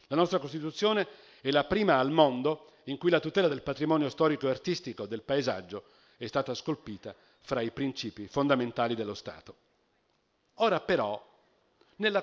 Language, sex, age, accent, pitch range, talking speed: Italian, male, 50-69, native, 125-180 Hz, 150 wpm